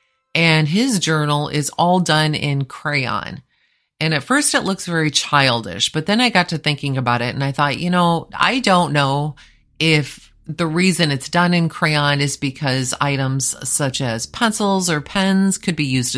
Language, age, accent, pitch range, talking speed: English, 30-49, American, 130-165 Hz, 180 wpm